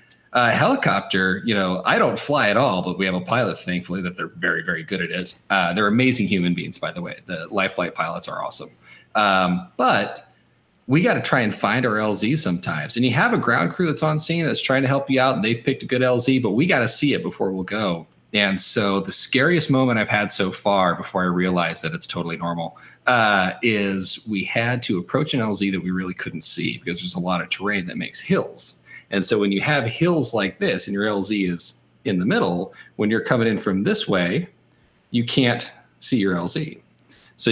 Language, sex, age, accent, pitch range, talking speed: English, male, 30-49, American, 90-125 Hz, 225 wpm